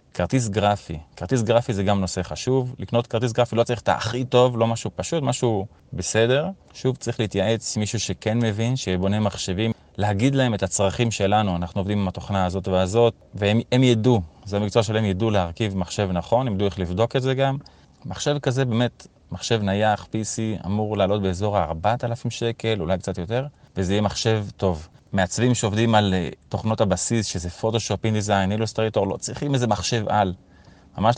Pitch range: 95-115 Hz